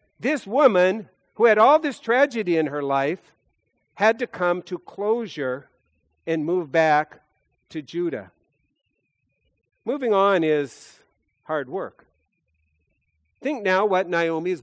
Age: 50-69